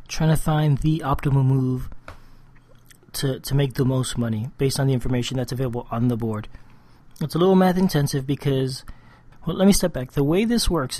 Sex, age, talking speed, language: male, 30-49, 195 wpm, English